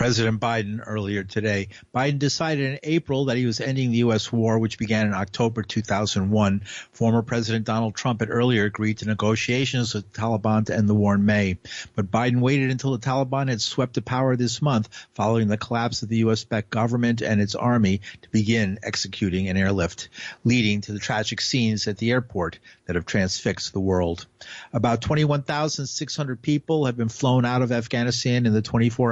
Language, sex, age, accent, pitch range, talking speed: English, male, 50-69, American, 105-125 Hz, 185 wpm